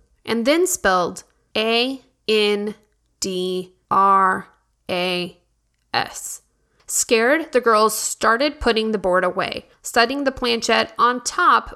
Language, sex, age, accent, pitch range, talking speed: English, female, 20-39, American, 205-260 Hz, 85 wpm